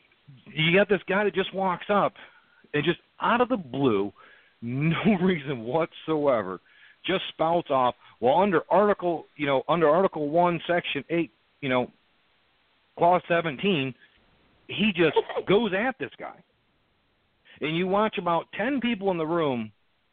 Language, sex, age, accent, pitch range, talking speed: English, male, 50-69, American, 140-195 Hz, 145 wpm